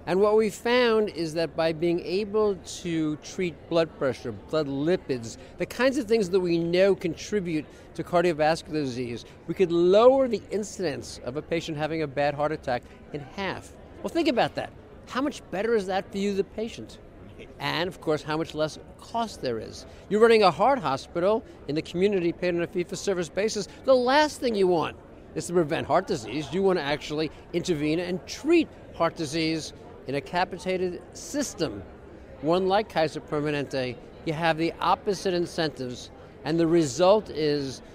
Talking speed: 175 wpm